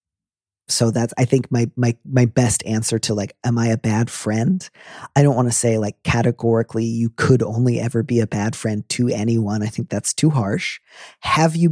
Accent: American